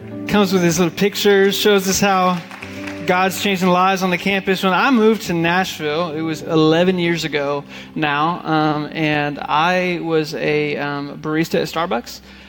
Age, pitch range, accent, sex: 20-39, 150-175 Hz, American, male